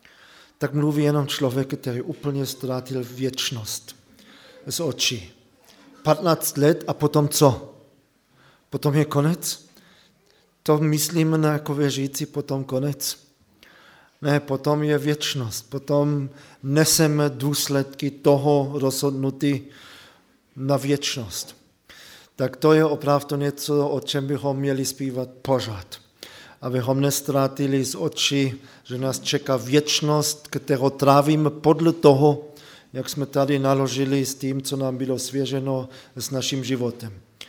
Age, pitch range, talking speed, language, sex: 40-59, 130-145 Hz, 115 wpm, Czech, male